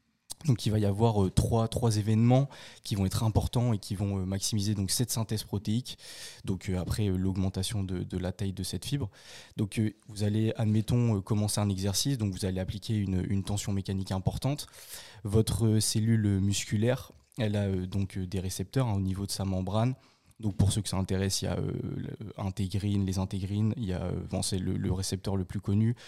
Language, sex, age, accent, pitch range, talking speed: French, male, 20-39, French, 95-110 Hz, 205 wpm